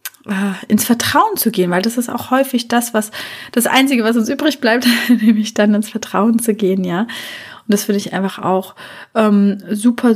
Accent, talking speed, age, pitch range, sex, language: German, 190 wpm, 30-49, 210-240 Hz, female, German